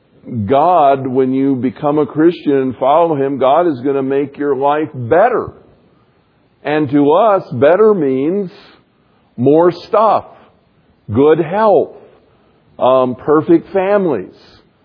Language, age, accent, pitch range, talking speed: English, 50-69, American, 130-170 Hz, 115 wpm